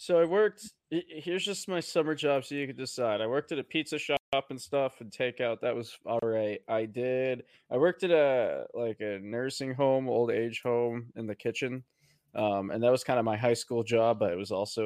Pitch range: 115-140 Hz